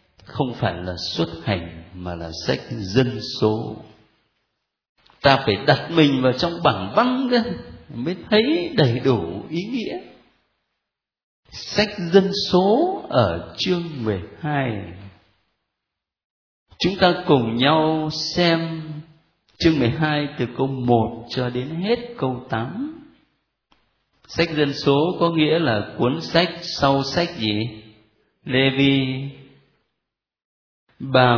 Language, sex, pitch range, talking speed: Vietnamese, male, 110-160 Hz, 115 wpm